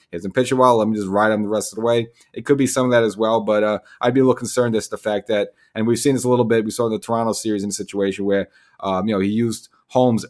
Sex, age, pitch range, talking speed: male, 30-49, 100-115 Hz, 330 wpm